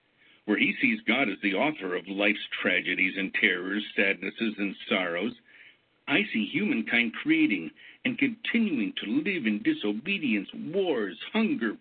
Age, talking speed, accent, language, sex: 60-79, 135 wpm, American, English, male